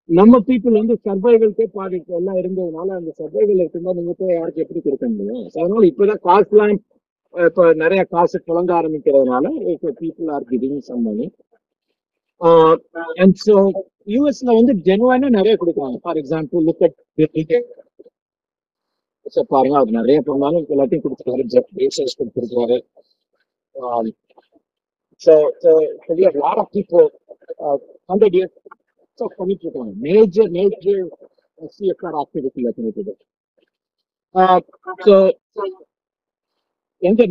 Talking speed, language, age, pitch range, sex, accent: 125 wpm, Tamil, 50-69, 170-245 Hz, male, native